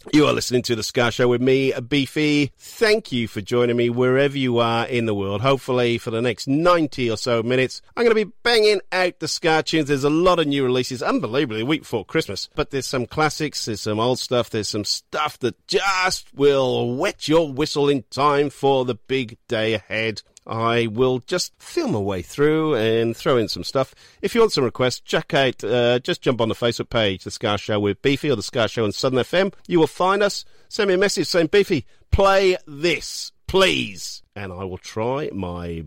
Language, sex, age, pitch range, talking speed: English, male, 40-59, 110-150 Hz, 215 wpm